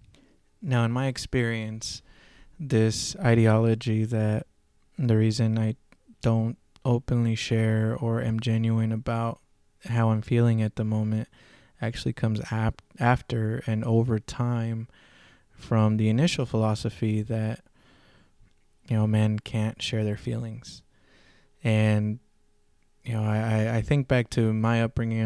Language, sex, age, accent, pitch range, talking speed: English, male, 20-39, American, 110-120 Hz, 120 wpm